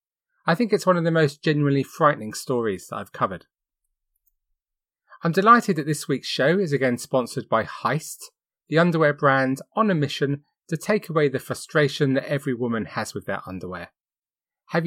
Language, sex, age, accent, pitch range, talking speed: English, male, 30-49, British, 125-170 Hz, 170 wpm